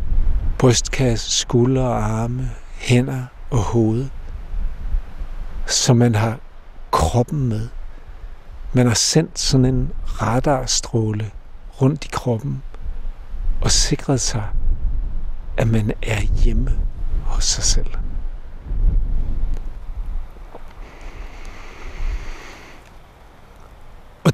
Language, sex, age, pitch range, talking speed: Danish, male, 60-79, 95-135 Hz, 80 wpm